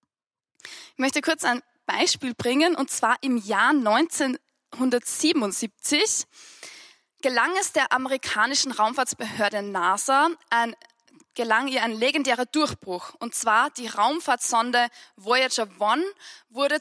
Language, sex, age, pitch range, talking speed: English, female, 10-29, 230-290 Hz, 105 wpm